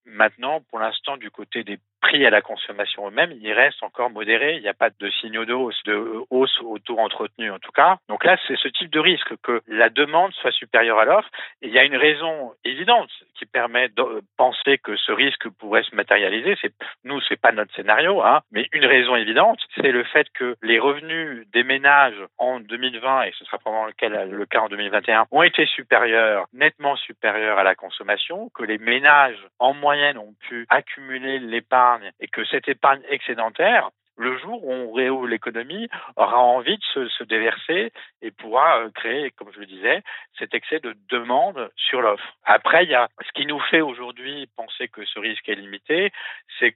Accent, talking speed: French, 200 wpm